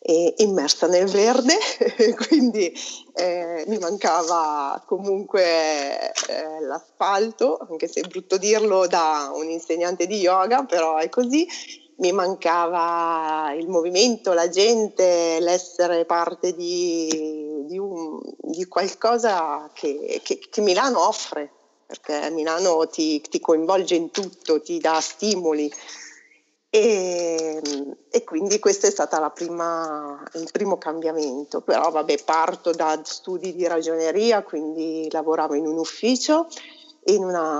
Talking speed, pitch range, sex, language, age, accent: 115 wpm, 160-225 Hz, female, Italian, 40-59, native